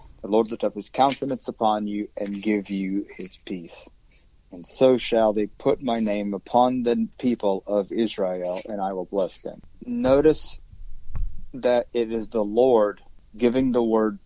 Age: 30-49